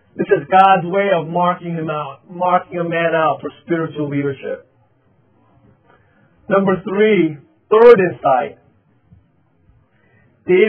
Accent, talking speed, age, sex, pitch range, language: American, 110 wpm, 40-59, male, 140-185 Hz, English